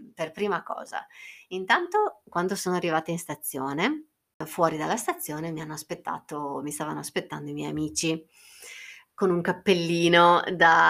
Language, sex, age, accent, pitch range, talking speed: Italian, female, 30-49, native, 165-215 Hz, 140 wpm